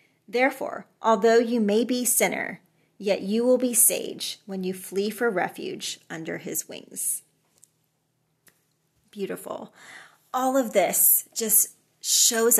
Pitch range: 185-230 Hz